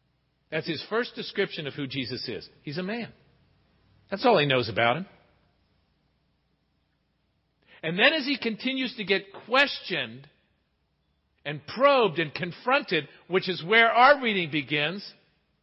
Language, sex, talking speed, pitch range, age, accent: English, male, 135 wpm, 175-265 Hz, 50-69, American